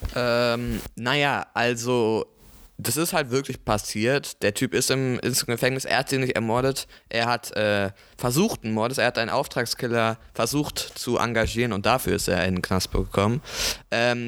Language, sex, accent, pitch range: German, male, German, 105-125 Hz